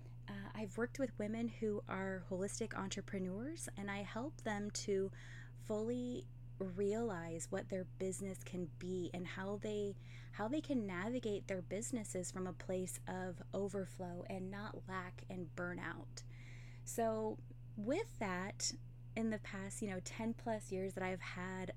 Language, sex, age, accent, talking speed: English, female, 20-39, American, 150 wpm